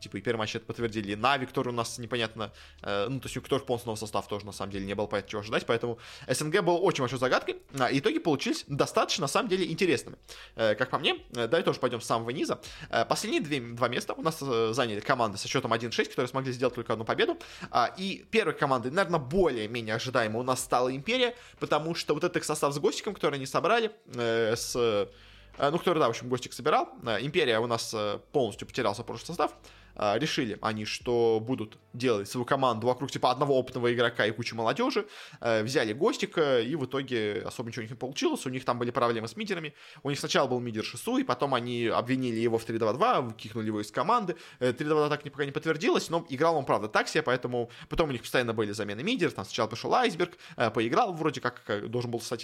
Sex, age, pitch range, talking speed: male, 20-39, 115-155 Hz, 220 wpm